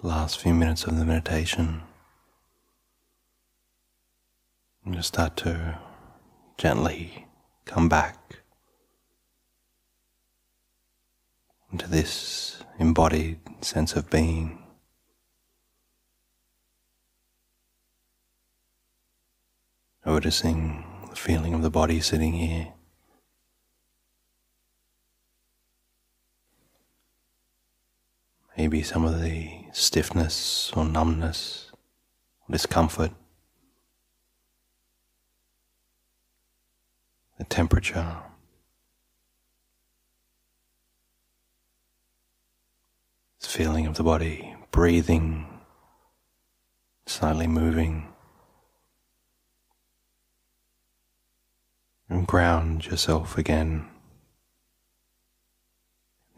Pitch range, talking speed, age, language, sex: 80-85 Hz, 55 wpm, 30-49, English, male